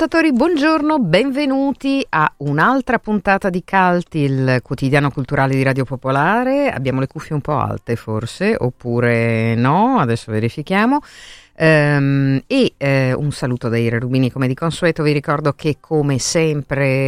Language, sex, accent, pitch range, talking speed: Italian, female, native, 125-165 Hz, 135 wpm